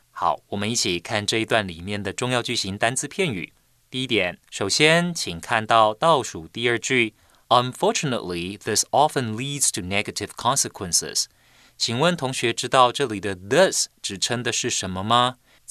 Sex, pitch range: male, 95-130 Hz